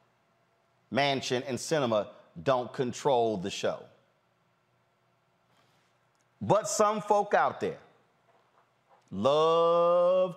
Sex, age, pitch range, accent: male, 30-49, 125-155 Hz, American